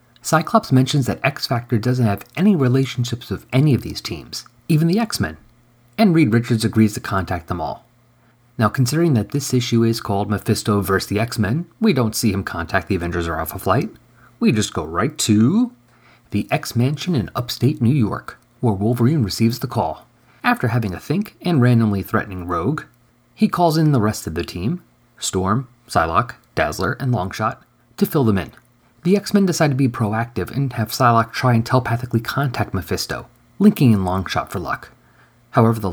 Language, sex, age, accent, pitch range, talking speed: English, male, 30-49, American, 105-130 Hz, 180 wpm